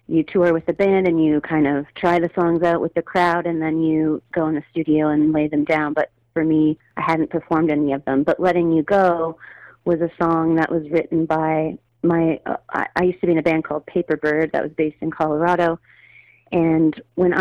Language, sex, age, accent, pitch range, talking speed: English, female, 30-49, American, 155-180 Hz, 225 wpm